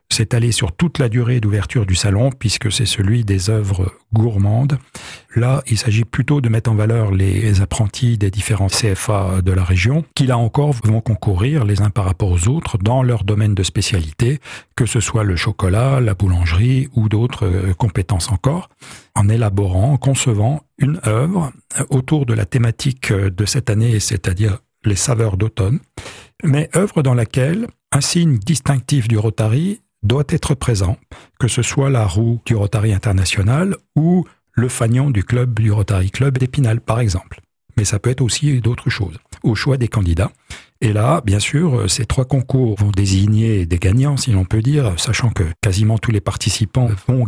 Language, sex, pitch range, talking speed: French, male, 105-130 Hz, 175 wpm